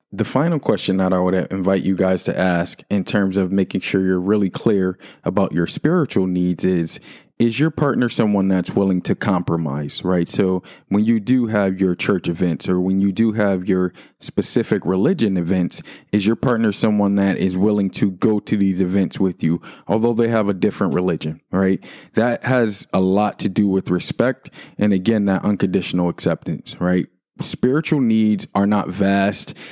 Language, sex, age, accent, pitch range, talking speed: English, male, 20-39, American, 95-105 Hz, 180 wpm